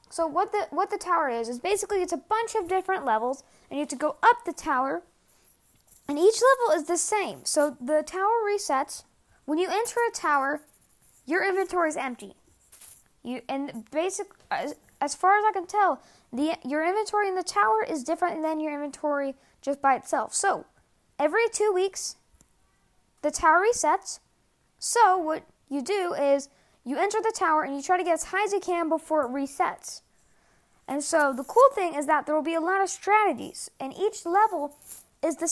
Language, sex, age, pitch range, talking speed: English, female, 10-29, 280-385 Hz, 195 wpm